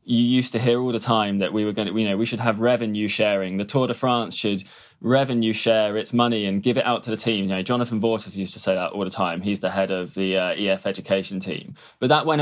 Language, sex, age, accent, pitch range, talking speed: English, male, 20-39, British, 100-125 Hz, 280 wpm